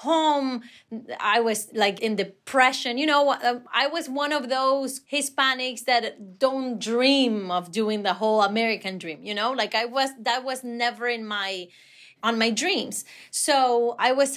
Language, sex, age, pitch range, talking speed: English, female, 30-49, 220-275 Hz, 165 wpm